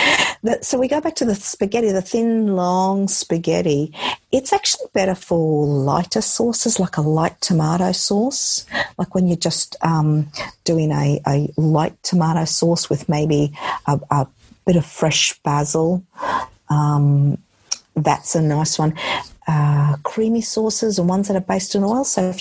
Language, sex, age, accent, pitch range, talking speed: English, female, 50-69, Australian, 145-190 Hz, 155 wpm